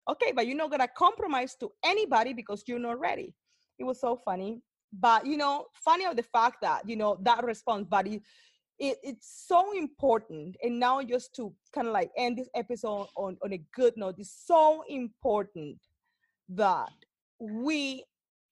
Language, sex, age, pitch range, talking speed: English, female, 30-49, 225-290 Hz, 175 wpm